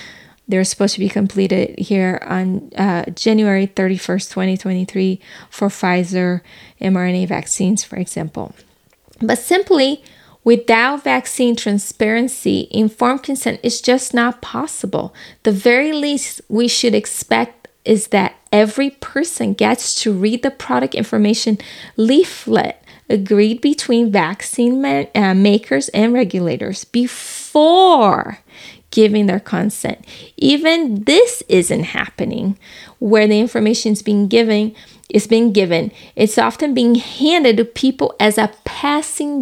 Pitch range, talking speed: 195-250 Hz, 115 wpm